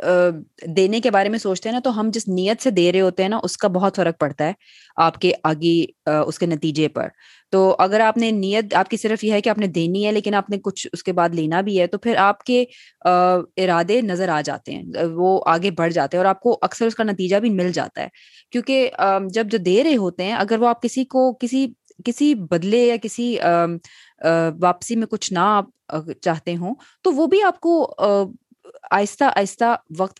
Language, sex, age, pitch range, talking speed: Urdu, female, 20-39, 180-225 Hz, 215 wpm